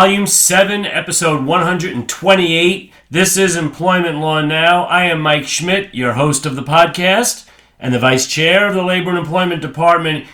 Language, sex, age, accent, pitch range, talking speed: English, male, 40-59, American, 145-175 Hz, 165 wpm